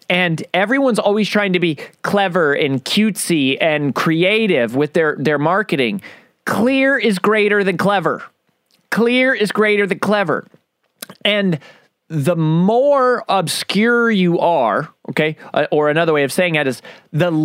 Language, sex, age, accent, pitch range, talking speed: English, male, 30-49, American, 170-235 Hz, 140 wpm